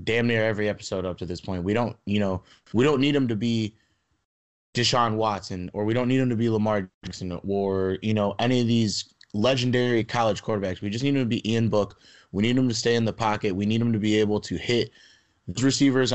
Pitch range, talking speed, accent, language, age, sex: 100-120 Hz, 235 wpm, American, English, 20-39, male